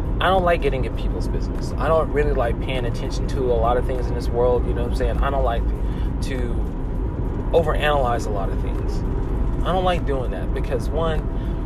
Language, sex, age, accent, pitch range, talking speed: English, male, 20-39, American, 90-135 Hz, 215 wpm